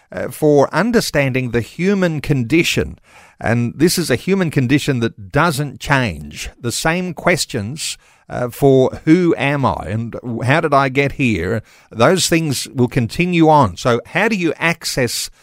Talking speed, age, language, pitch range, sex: 150 wpm, 50-69, English, 115-145 Hz, male